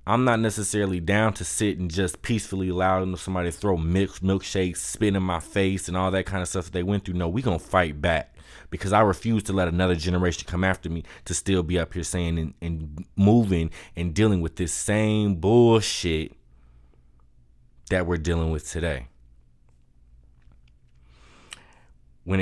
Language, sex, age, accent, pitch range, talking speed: English, male, 20-39, American, 80-100 Hz, 175 wpm